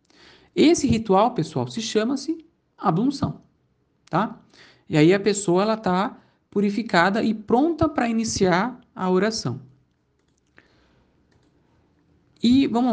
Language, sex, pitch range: Portuguese, male, 155-240 Hz